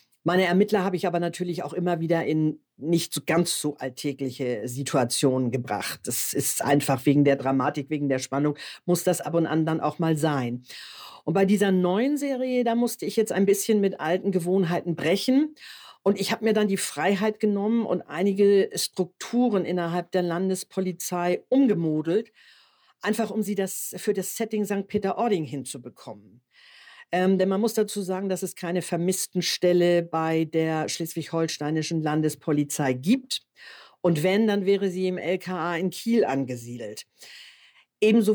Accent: German